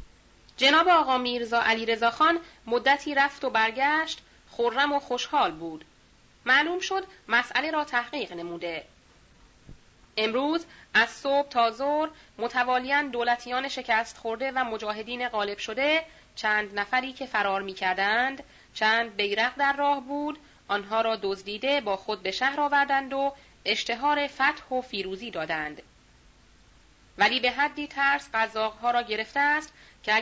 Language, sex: Persian, female